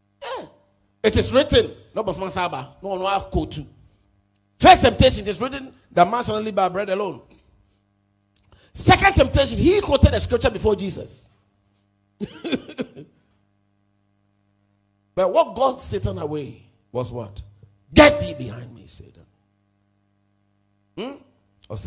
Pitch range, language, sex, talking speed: 100-135 Hz, English, male, 110 wpm